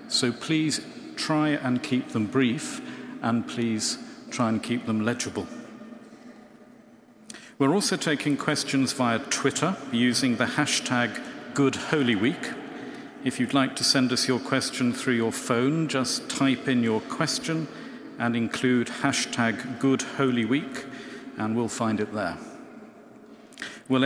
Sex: male